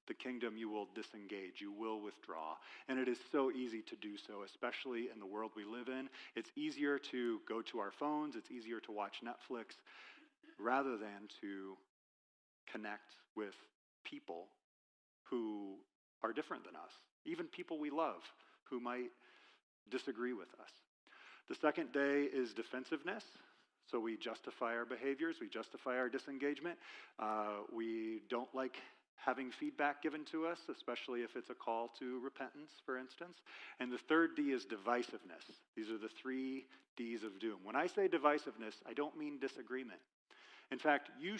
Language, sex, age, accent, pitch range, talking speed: English, male, 40-59, American, 115-150 Hz, 160 wpm